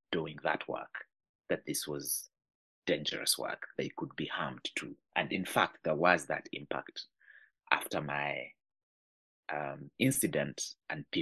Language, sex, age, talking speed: English, male, 30-49, 135 wpm